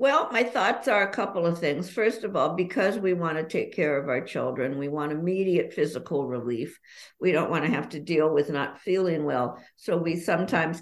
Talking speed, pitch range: 215 wpm, 150-210 Hz